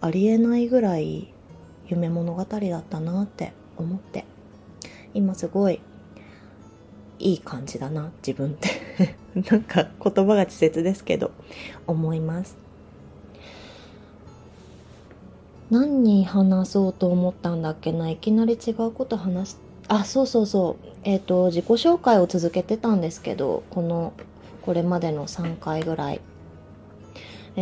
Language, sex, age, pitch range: Japanese, female, 20-39, 150-205 Hz